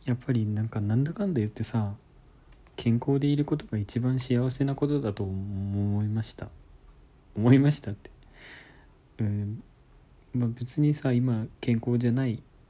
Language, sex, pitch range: Japanese, male, 100-120 Hz